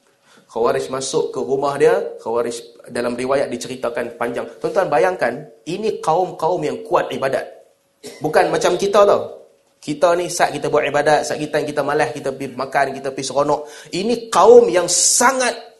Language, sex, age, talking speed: Malay, male, 30-49, 160 wpm